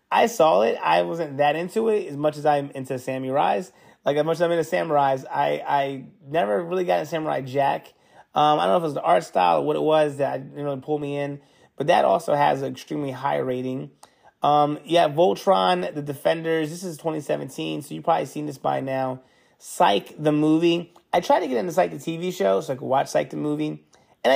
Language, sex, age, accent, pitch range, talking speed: English, male, 30-49, American, 130-160 Hz, 225 wpm